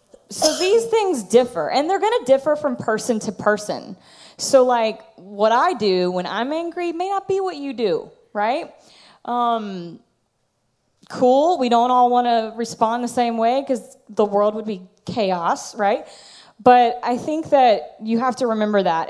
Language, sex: English, female